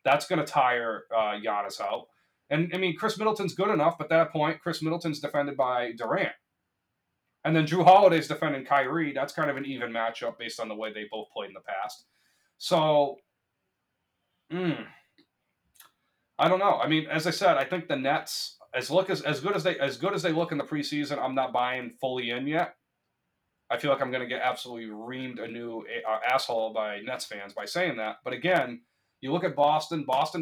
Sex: male